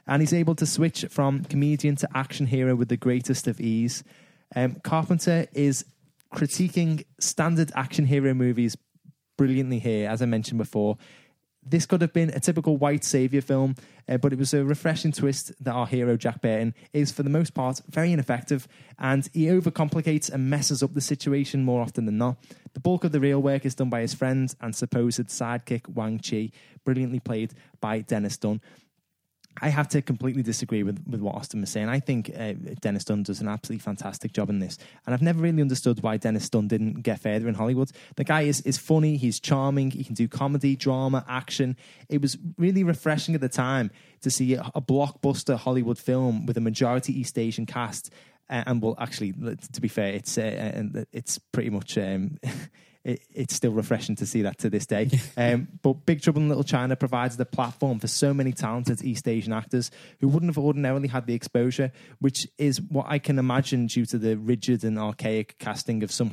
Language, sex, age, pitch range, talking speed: English, male, 10-29, 115-145 Hz, 200 wpm